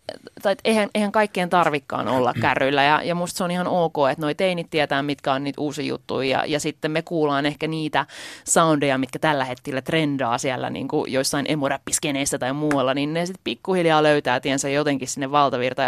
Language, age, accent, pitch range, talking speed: Finnish, 30-49, native, 140-185 Hz, 190 wpm